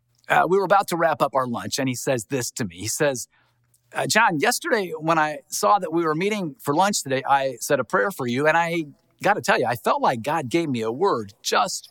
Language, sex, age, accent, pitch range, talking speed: English, male, 50-69, American, 120-130 Hz, 255 wpm